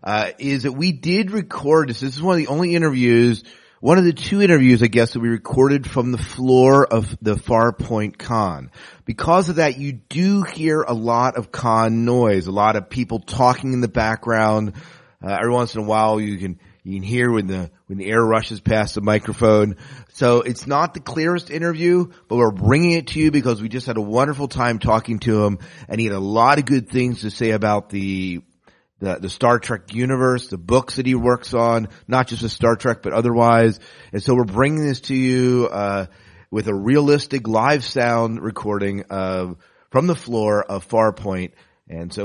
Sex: male